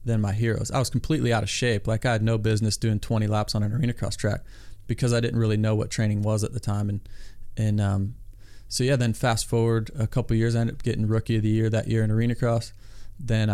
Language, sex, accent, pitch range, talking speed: English, male, American, 105-120 Hz, 255 wpm